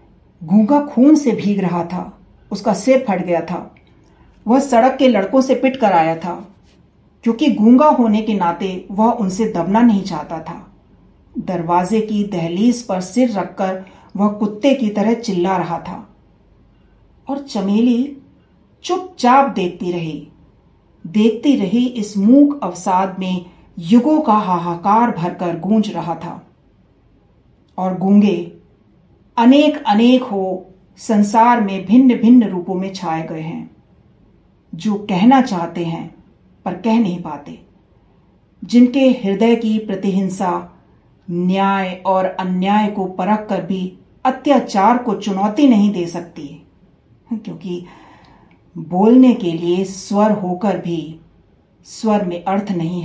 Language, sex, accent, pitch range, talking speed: Hindi, female, native, 180-235 Hz, 125 wpm